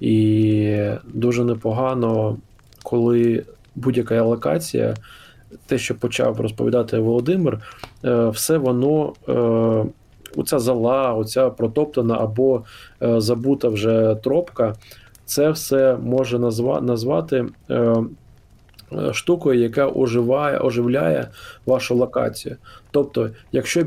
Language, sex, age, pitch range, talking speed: Ukrainian, male, 20-39, 115-130 Hz, 90 wpm